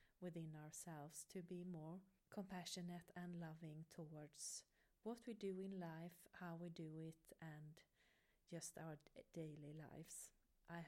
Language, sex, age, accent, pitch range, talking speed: English, female, 40-59, Swedish, 160-195 Hz, 130 wpm